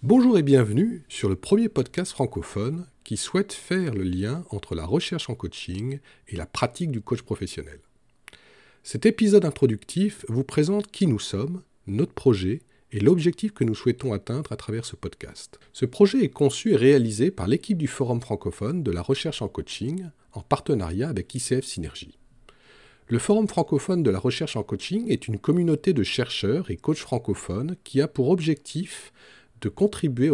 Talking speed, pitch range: 170 wpm, 105-170 Hz